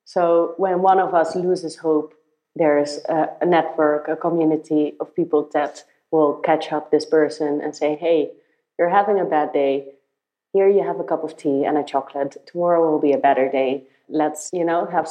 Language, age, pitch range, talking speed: English, 30-49, 150-175 Hz, 200 wpm